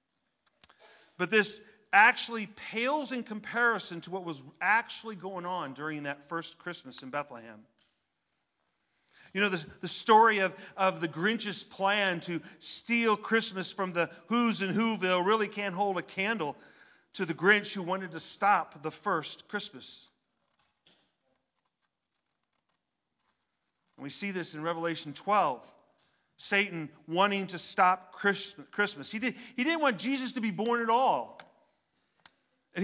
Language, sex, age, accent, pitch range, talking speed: English, male, 40-59, American, 180-235 Hz, 135 wpm